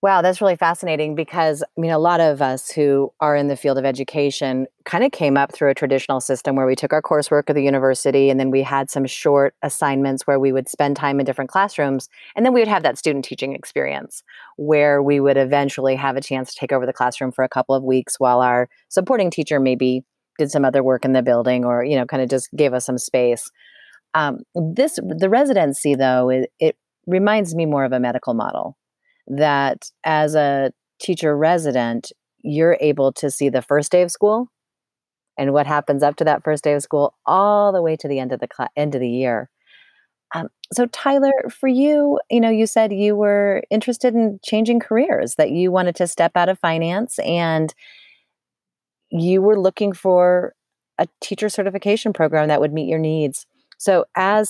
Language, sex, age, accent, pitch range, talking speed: English, female, 30-49, American, 135-185 Hz, 205 wpm